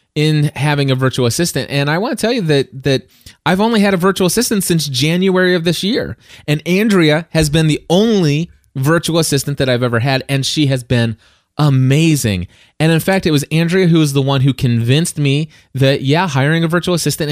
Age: 20-39